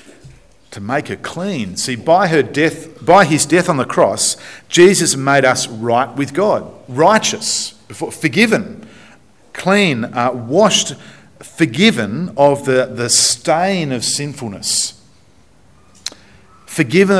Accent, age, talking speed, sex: Australian, 50-69, 115 wpm, male